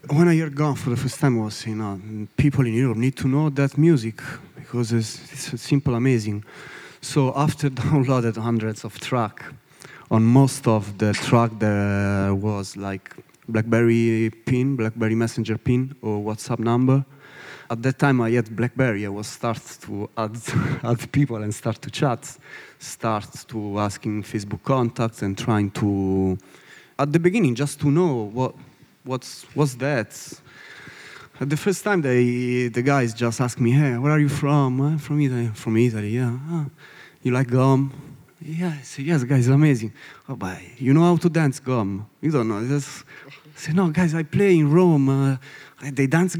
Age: 30-49